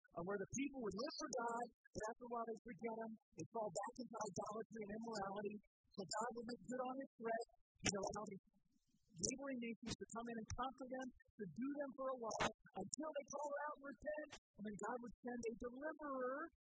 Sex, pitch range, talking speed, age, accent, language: male, 200-265 Hz, 225 wpm, 50-69, American, English